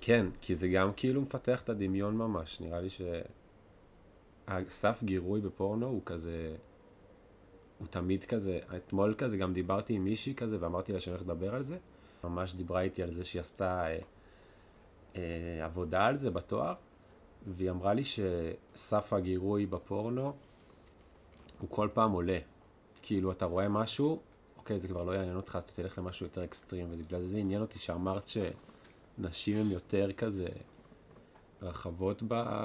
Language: Hebrew